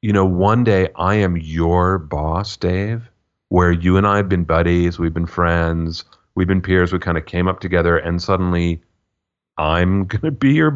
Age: 40-59